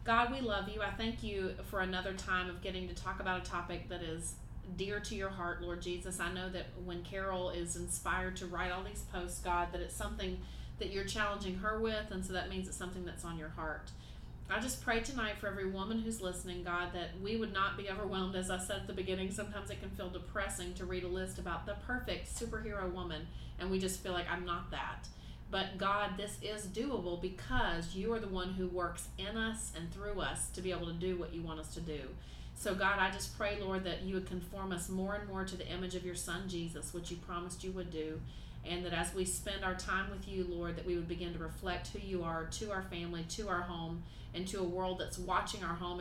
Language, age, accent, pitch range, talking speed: English, 30-49, American, 170-195 Hz, 245 wpm